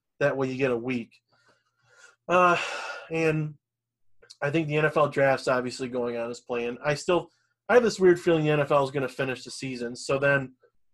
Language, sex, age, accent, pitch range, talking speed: English, male, 30-49, American, 125-150 Hz, 190 wpm